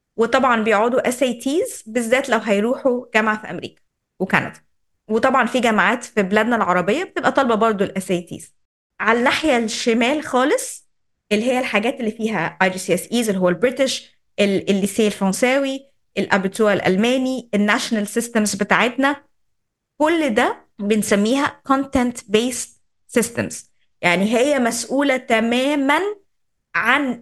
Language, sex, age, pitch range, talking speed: Arabic, female, 20-39, 210-280 Hz, 120 wpm